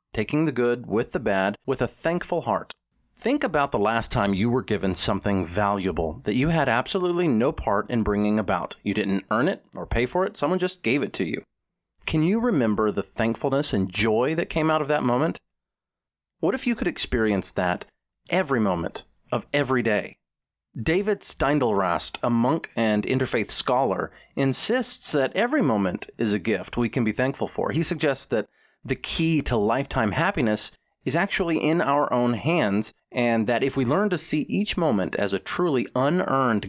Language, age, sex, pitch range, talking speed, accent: English, 30-49, male, 105-160 Hz, 185 wpm, American